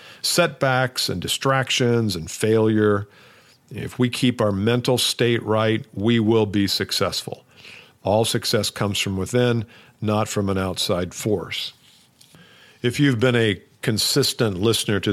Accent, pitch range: American, 105-125 Hz